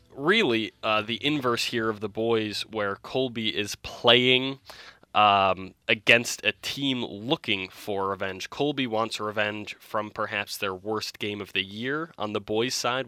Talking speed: 155 wpm